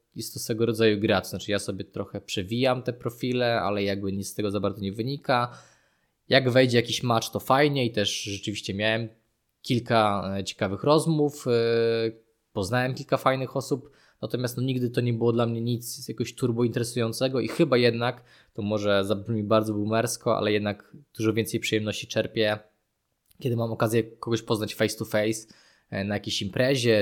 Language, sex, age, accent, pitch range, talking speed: Polish, male, 20-39, native, 105-120 Hz, 170 wpm